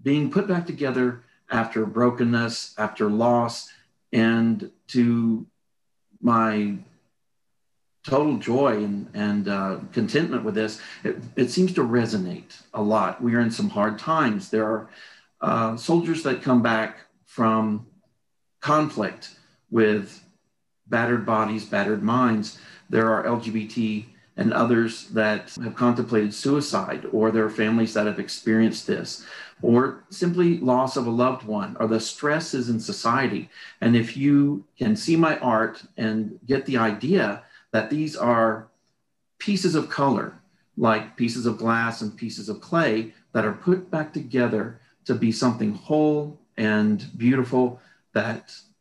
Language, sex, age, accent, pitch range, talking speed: English, male, 50-69, American, 110-140 Hz, 140 wpm